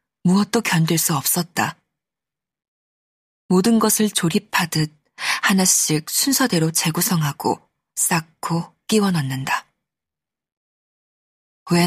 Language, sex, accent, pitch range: Korean, female, native, 155-200 Hz